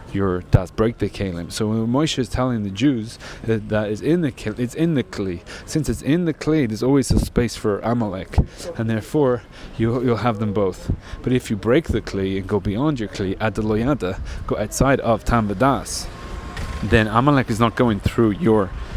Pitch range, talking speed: 100-125 Hz, 210 wpm